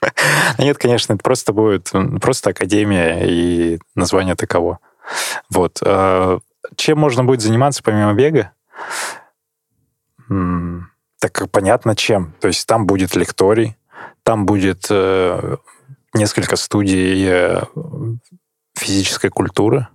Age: 20-39